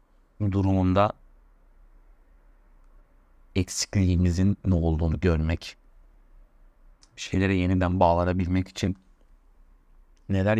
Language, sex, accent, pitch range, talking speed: Turkish, male, native, 80-105 Hz, 55 wpm